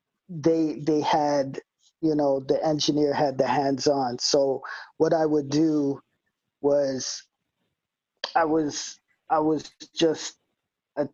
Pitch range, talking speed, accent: 145-165 Hz, 120 wpm, American